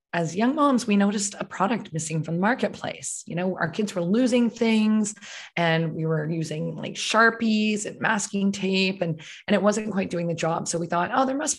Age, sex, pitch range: 20-39, female, 170-215 Hz